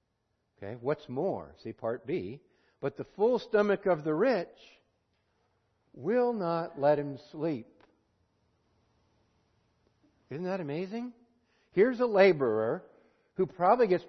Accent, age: American, 60-79